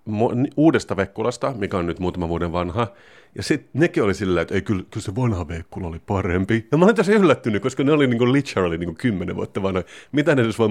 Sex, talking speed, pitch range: male, 230 wpm, 90-115 Hz